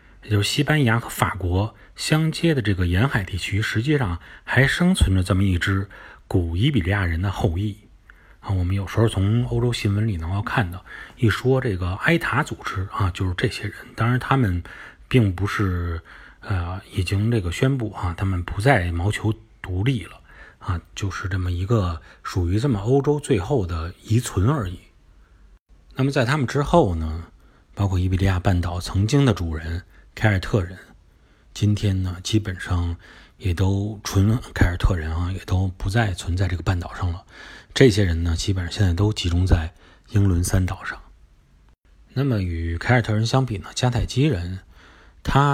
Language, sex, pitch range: Chinese, male, 90-115 Hz